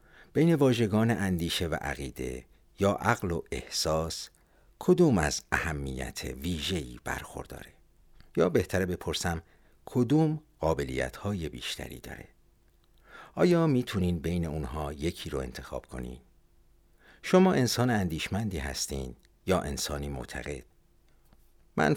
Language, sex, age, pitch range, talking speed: Persian, male, 50-69, 70-105 Hz, 105 wpm